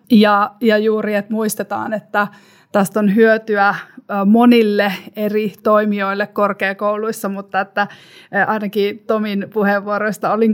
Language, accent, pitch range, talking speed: Finnish, native, 195-220 Hz, 110 wpm